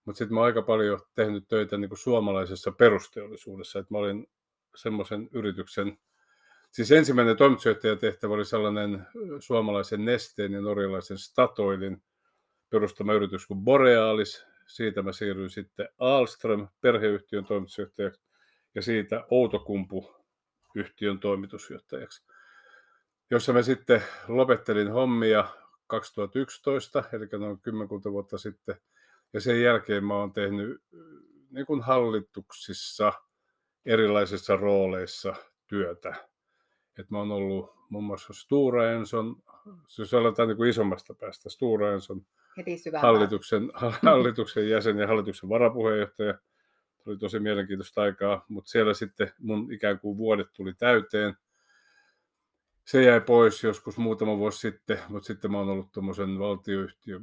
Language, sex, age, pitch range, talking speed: Finnish, male, 50-69, 100-115 Hz, 115 wpm